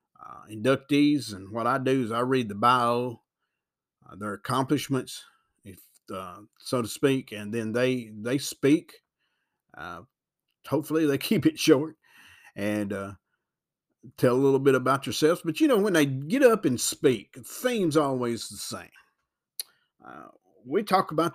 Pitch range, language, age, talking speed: 125-190 Hz, English, 50-69, 155 wpm